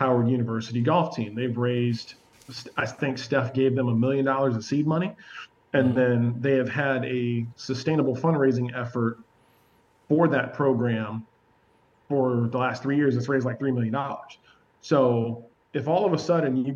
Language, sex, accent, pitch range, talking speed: English, male, American, 115-140 Hz, 165 wpm